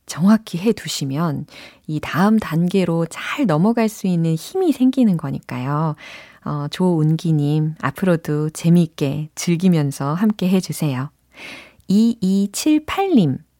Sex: female